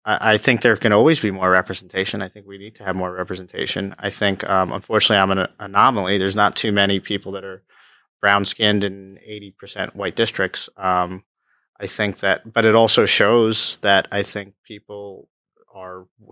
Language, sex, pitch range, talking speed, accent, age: English, male, 100-115 Hz, 180 wpm, American, 30-49